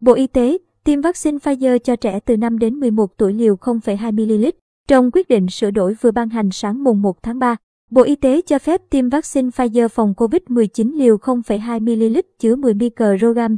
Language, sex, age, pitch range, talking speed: Vietnamese, male, 20-39, 225-260 Hz, 200 wpm